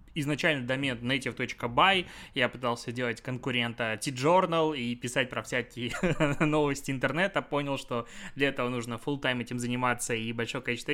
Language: Russian